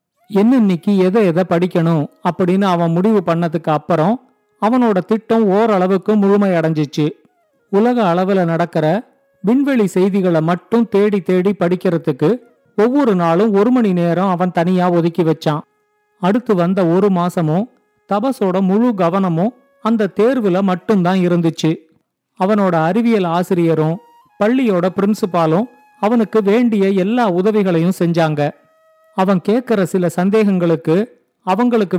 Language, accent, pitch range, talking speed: Tamil, native, 175-220 Hz, 110 wpm